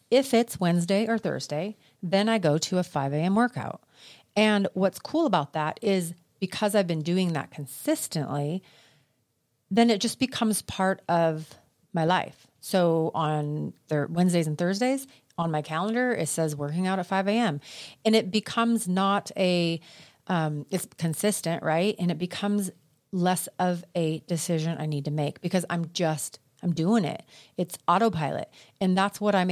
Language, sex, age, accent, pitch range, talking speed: English, female, 40-59, American, 160-200 Hz, 160 wpm